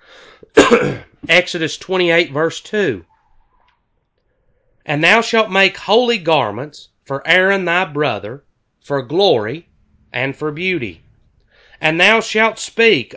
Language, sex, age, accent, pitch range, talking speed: English, male, 30-49, American, 140-195 Hz, 105 wpm